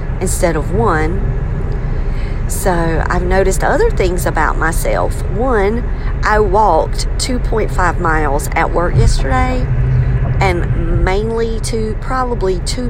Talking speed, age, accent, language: 105 wpm, 40-59, American, English